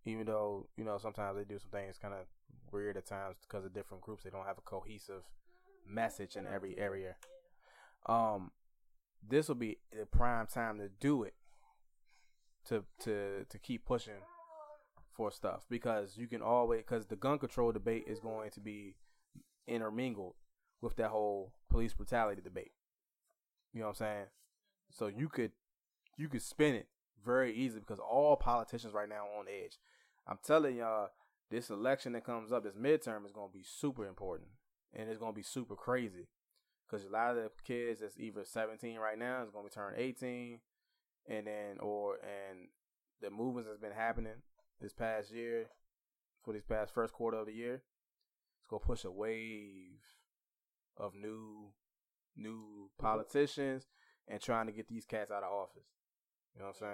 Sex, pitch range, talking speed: male, 105-120 Hz, 175 wpm